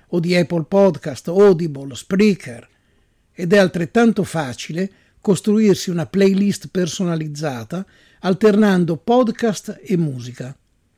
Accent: native